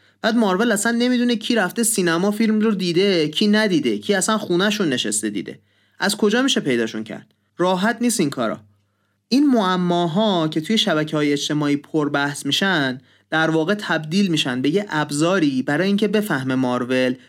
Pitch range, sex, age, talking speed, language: 140-200 Hz, male, 30-49, 165 wpm, Persian